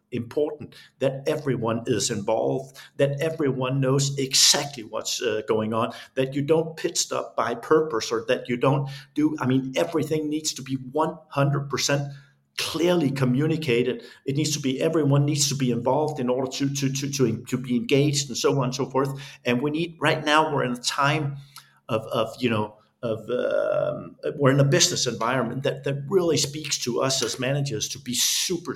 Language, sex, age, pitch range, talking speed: English, male, 50-69, 125-145 Hz, 190 wpm